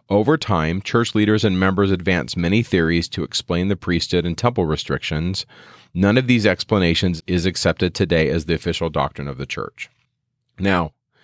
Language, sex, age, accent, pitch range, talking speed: English, male, 40-59, American, 90-110 Hz, 165 wpm